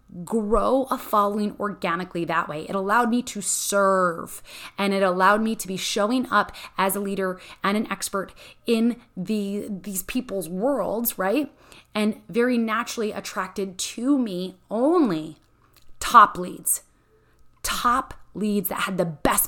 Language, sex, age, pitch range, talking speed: English, female, 20-39, 185-230 Hz, 145 wpm